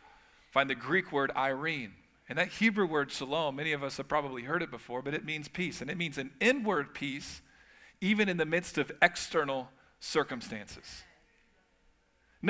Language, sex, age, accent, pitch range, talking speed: English, male, 40-59, American, 165-220 Hz, 175 wpm